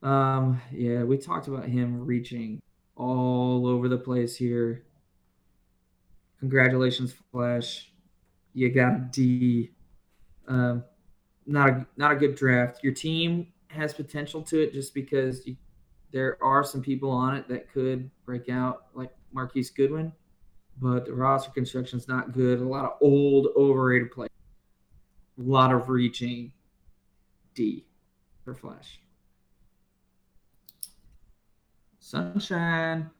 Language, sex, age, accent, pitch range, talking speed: English, male, 20-39, American, 120-135 Hz, 125 wpm